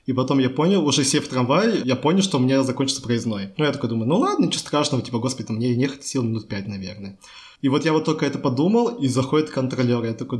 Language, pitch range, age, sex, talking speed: Russian, 130-150 Hz, 20-39, male, 260 wpm